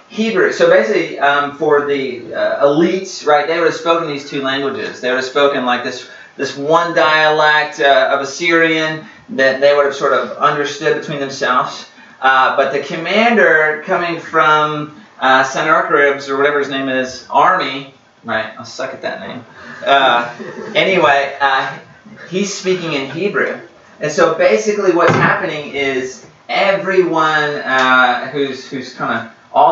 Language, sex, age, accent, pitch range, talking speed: English, male, 30-49, American, 135-170 Hz, 155 wpm